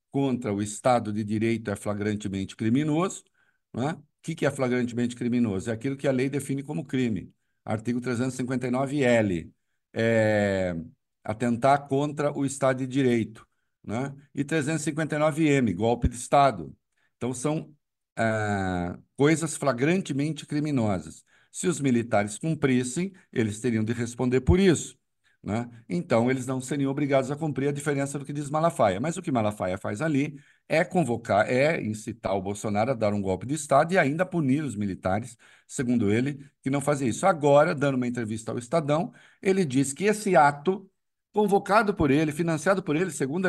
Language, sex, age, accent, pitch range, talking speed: Portuguese, male, 50-69, Brazilian, 115-160 Hz, 155 wpm